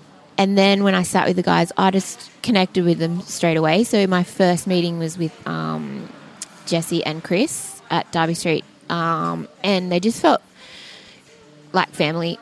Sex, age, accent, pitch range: female, 20-39, Australian, 155-185 Hz